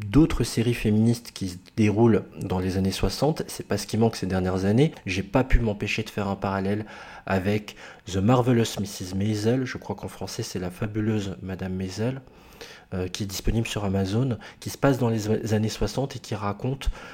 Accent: French